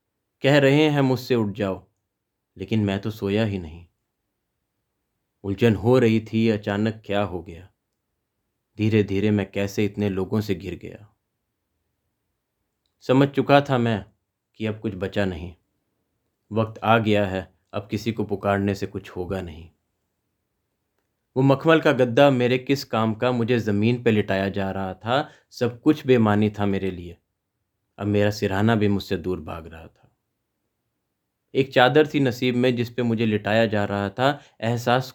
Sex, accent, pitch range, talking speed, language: male, native, 100-115 Hz, 160 wpm, Hindi